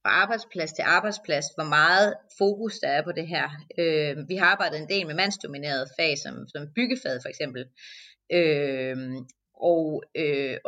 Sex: female